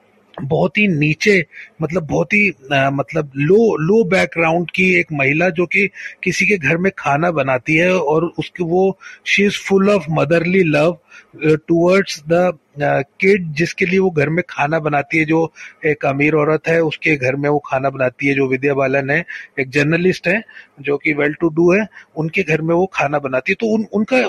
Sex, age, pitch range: male, 30-49, 155-210 Hz